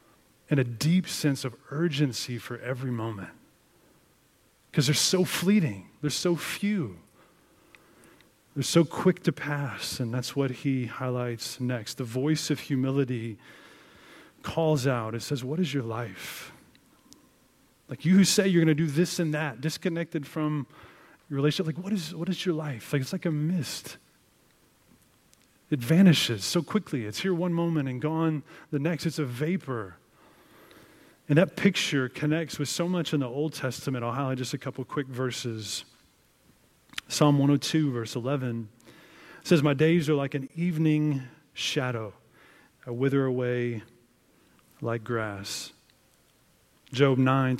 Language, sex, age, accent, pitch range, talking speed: English, male, 30-49, American, 125-160 Hz, 145 wpm